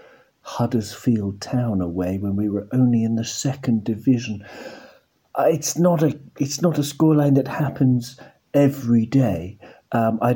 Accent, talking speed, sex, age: British, 140 wpm, male, 50-69